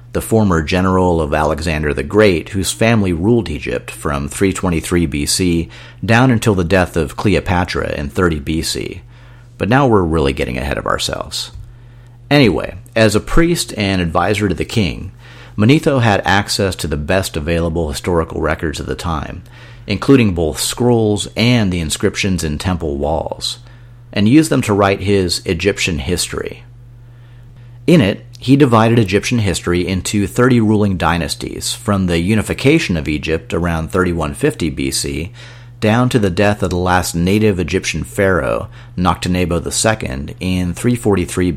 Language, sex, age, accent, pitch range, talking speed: English, male, 40-59, American, 85-120 Hz, 145 wpm